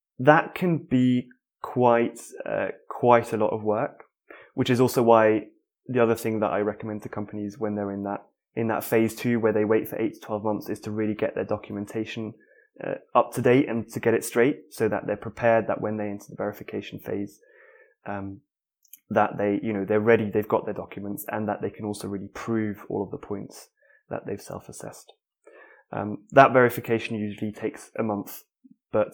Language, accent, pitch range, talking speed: English, British, 105-125 Hz, 200 wpm